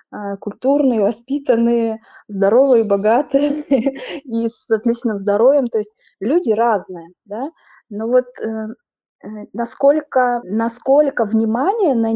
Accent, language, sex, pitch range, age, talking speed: native, Russian, female, 210-255 Hz, 20-39, 85 wpm